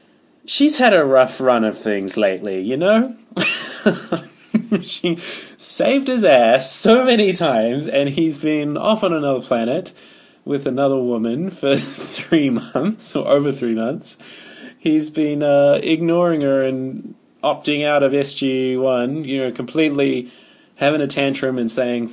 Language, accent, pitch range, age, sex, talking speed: English, Australian, 115-160 Hz, 20-39, male, 140 wpm